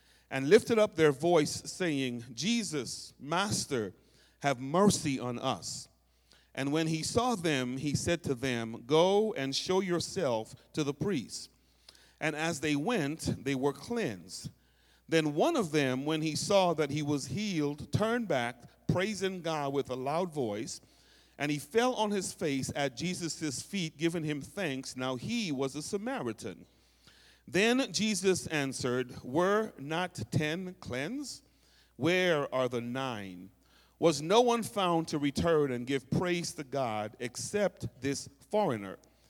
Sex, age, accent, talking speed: male, 40-59, American, 145 wpm